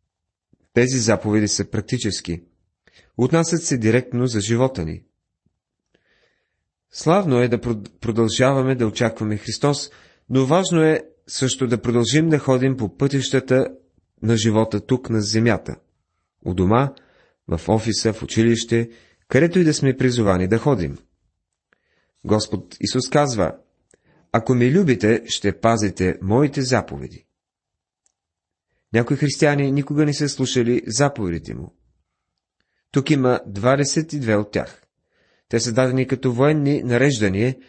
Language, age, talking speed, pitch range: Bulgarian, 30-49, 120 wpm, 105-135 Hz